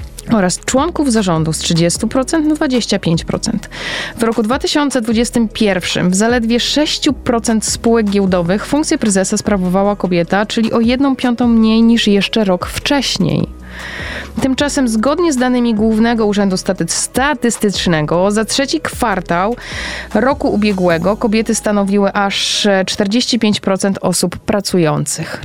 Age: 20-39